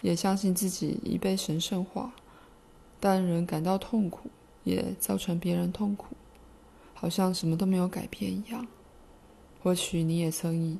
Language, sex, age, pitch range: Chinese, female, 20-39, 170-200 Hz